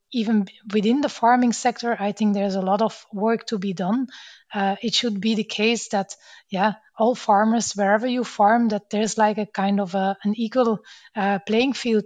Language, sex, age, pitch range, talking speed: English, female, 20-39, 205-235 Hz, 195 wpm